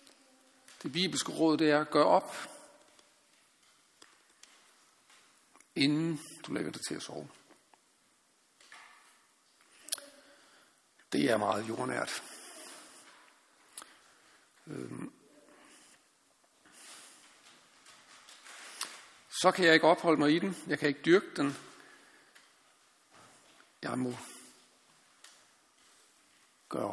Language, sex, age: Danish, male, 60-79